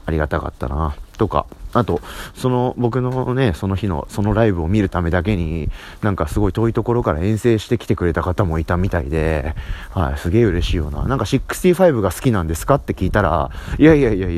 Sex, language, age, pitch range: male, Japanese, 30-49, 85-115 Hz